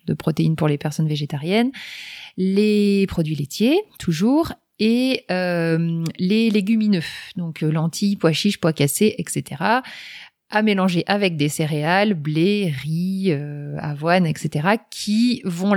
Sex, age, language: female, 30-49, French